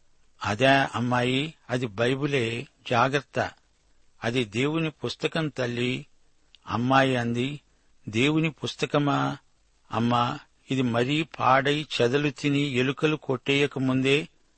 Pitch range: 120-140 Hz